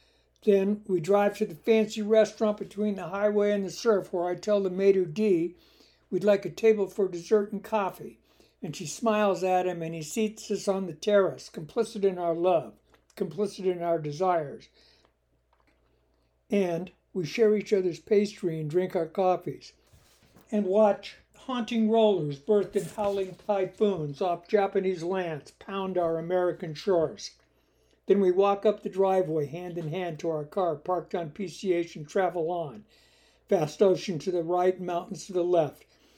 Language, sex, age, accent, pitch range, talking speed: English, male, 60-79, American, 170-205 Hz, 165 wpm